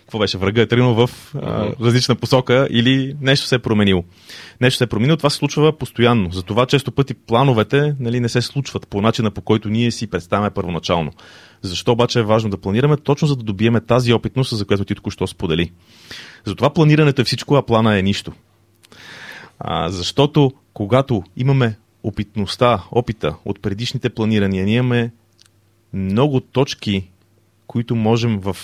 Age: 30-49